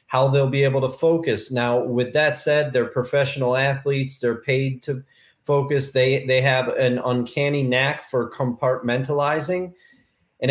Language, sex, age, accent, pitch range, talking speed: English, male, 30-49, American, 125-160 Hz, 150 wpm